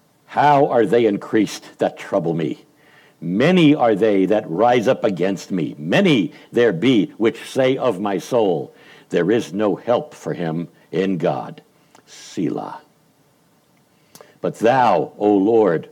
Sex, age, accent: male, 60-79, American